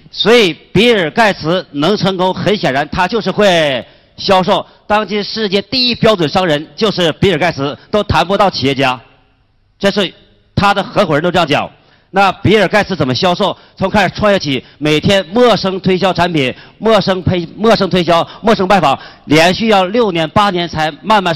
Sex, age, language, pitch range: male, 40-59, Chinese, 150-205 Hz